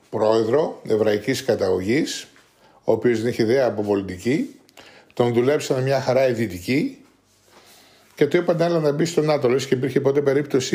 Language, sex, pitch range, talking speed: Greek, male, 115-150 Hz, 155 wpm